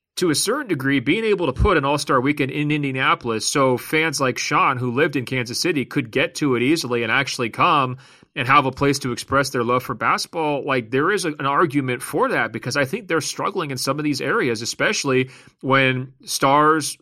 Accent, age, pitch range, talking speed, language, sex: American, 30-49, 125-150 Hz, 210 wpm, English, male